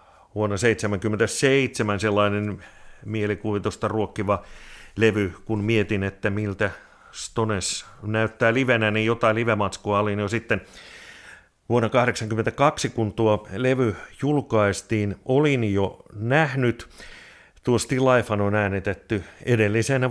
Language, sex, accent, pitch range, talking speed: Finnish, male, native, 100-115 Hz, 100 wpm